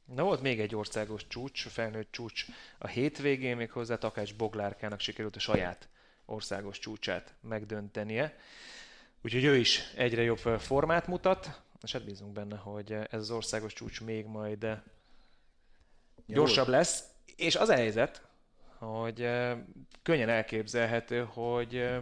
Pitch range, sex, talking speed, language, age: 105-120 Hz, male, 130 wpm, Hungarian, 30-49